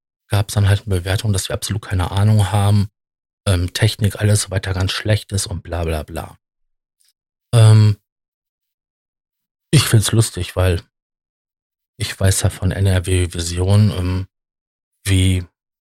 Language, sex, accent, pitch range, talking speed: German, male, German, 90-110 Hz, 145 wpm